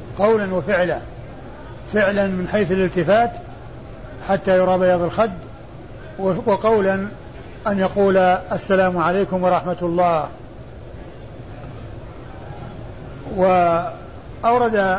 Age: 60-79